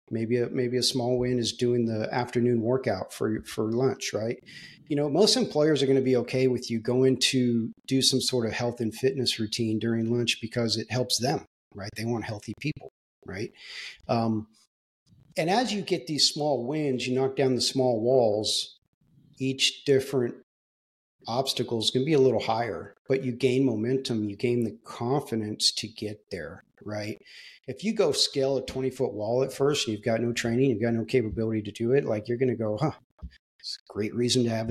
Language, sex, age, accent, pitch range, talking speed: English, male, 40-59, American, 115-130 Hz, 200 wpm